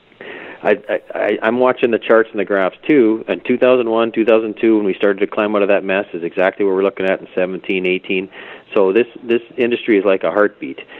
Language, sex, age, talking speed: English, male, 40-59, 215 wpm